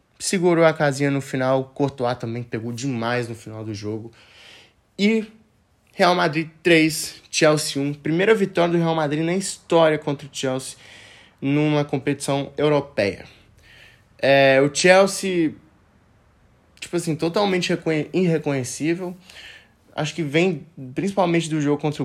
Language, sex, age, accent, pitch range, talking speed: Portuguese, male, 20-39, Brazilian, 125-160 Hz, 125 wpm